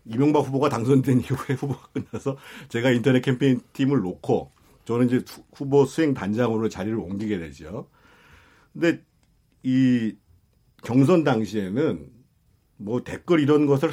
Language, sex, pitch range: Korean, male, 120-160 Hz